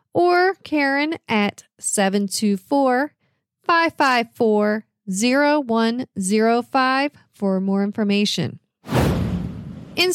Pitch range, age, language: 205-280 Hz, 40-59, English